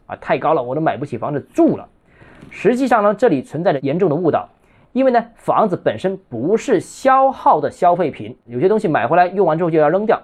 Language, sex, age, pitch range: Chinese, male, 20-39, 150-230 Hz